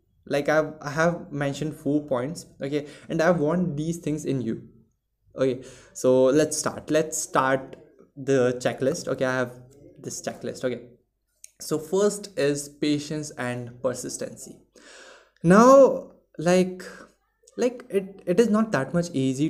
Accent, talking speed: native, 140 wpm